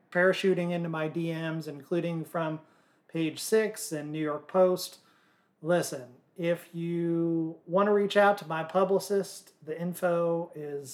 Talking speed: 135 wpm